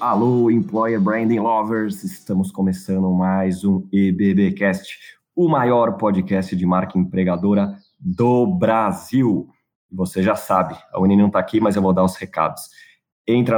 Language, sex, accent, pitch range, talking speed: English, male, Brazilian, 95-125 Hz, 140 wpm